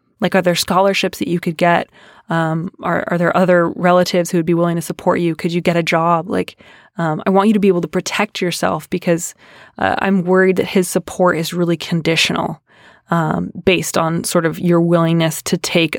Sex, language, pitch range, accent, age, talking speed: female, English, 170-195 Hz, American, 20-39, 210 wpm